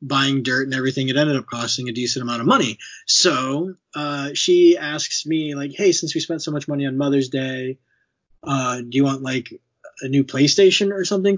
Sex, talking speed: male, 205 wpm